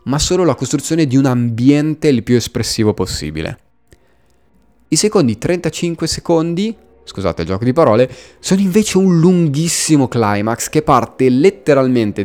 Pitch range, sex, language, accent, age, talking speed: 110-155 Hz, male, Italian, native, 30-49, 135 wpm